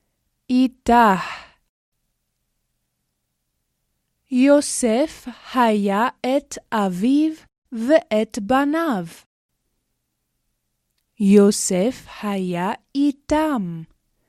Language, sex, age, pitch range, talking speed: Hebrew, female, 20-39, 165-280 Hz, 40 wpm